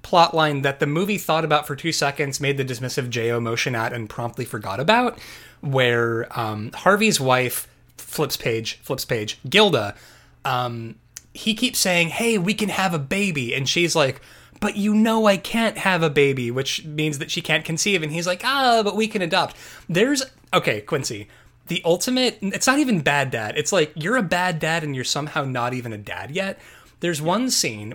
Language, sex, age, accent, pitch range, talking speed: English, male, 20-39, American, 135-205 Hz, 195 wpm